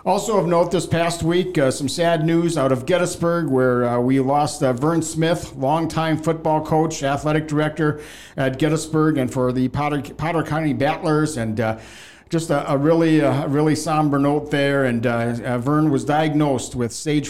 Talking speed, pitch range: 180 wpm, 130-155 Hz